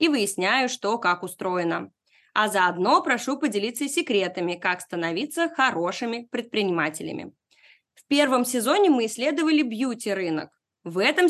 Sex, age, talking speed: female, 20-39, 115 wpm